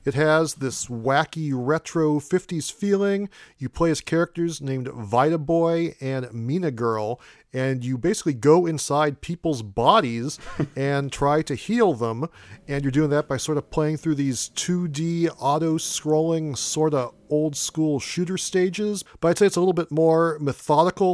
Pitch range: 130-165 Hz